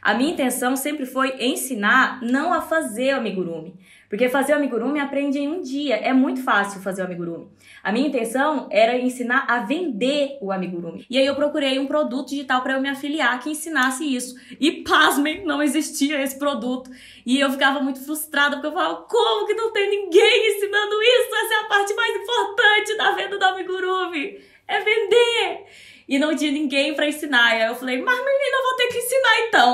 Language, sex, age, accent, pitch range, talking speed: Portuguese, female, 10-29, Brazilian, 250-315 Hz, 195 wpm